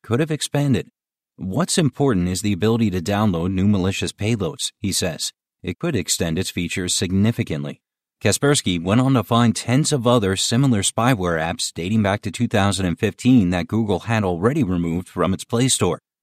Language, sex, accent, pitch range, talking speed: English, male, American, 95-125 Hz, 165 wpm